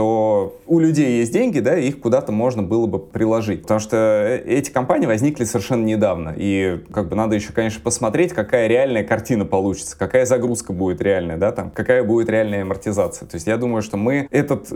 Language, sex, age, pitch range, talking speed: Russian, male, 20-39, 110-140 Hz, 195 wpm